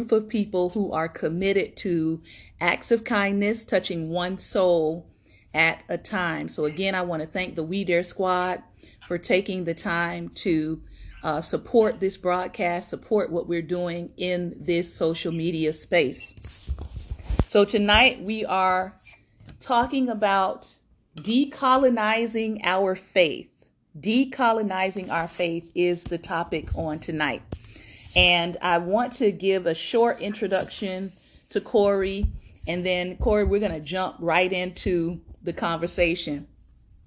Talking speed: 130 wpm